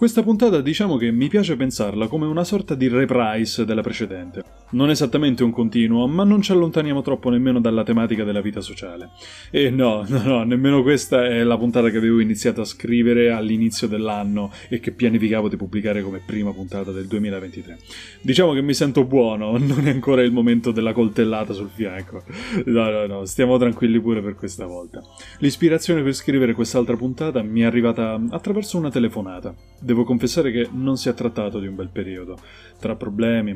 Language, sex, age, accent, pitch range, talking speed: Italian, male, 20-39, native, 105-130 Hz, 180 wpm